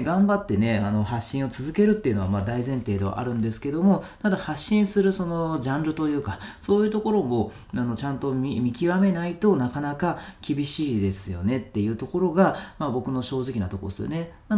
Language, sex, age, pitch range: Japanese, male, 40-59, 110-185 Hz